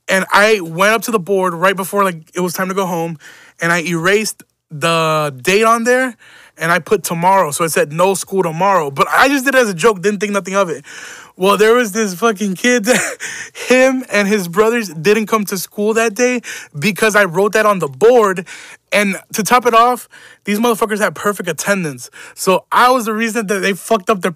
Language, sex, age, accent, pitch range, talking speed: English, male, 20-39, American, 175-220 Hz, 220 wpm